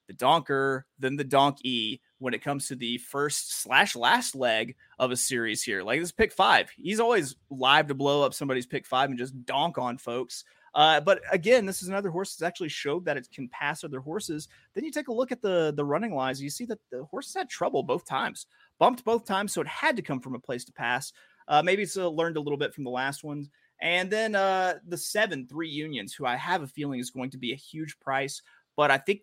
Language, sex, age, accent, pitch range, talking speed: English, male, 30-49, American, 125-170 Hz, 240 wpm